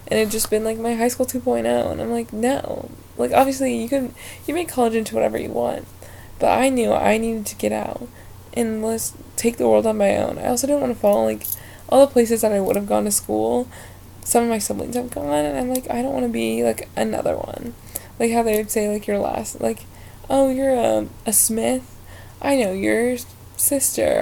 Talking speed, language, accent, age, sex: 235 wpm, English, American, 20-39, female